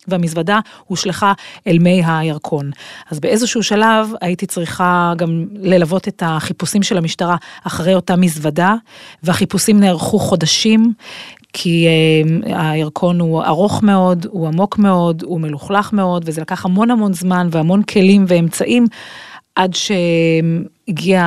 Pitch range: 170-205 Hz